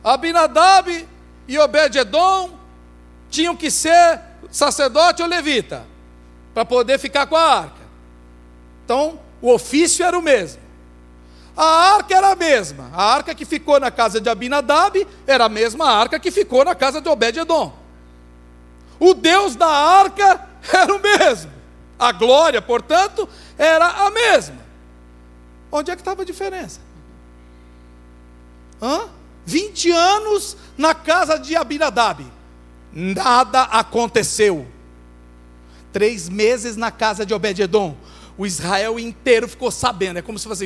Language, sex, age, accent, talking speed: Portuguese, male, 60-79, Brazilian, 130 wpm